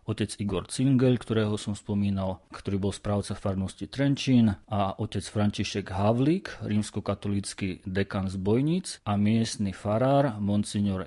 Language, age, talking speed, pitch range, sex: Slovak, 40-59, 125 wpm, 95-110 Hz, male